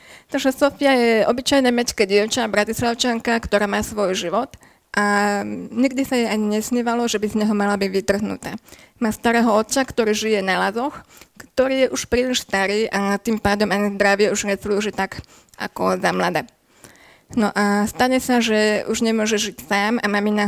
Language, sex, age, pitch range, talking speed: Slovak, female, 20-39, 205-235 Hz, 170 wpm